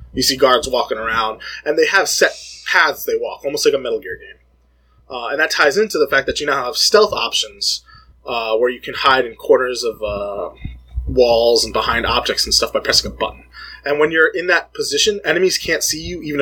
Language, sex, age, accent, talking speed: English, male, 20-39, American, 225 wpm